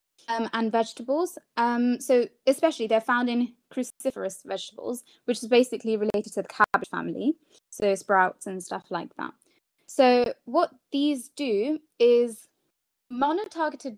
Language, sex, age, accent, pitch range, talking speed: English, female, 20-39, British, 205-255 Hz, 135 wpm